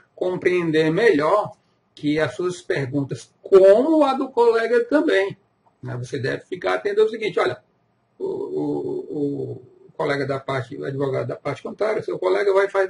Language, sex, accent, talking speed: Portuguese, male, Brazilian, 160 wpm